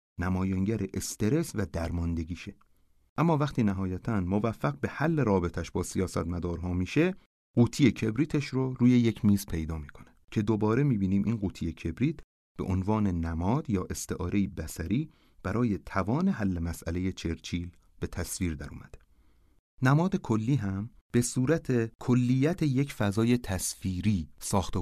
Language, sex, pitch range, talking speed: Persian, male, 85-120 Hz, 130 wpm